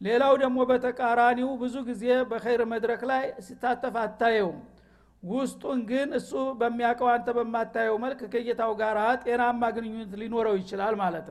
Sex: male